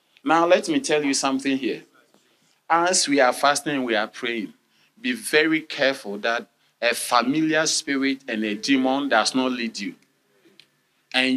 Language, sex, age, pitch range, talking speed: English, male, 40-59, 140-185 Hz, 155 wpm